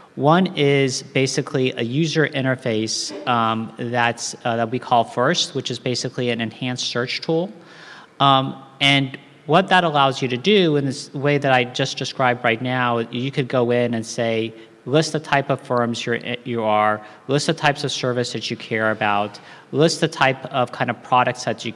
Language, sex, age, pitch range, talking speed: English, male, 40-59, 110-140 Hz, 190 wpm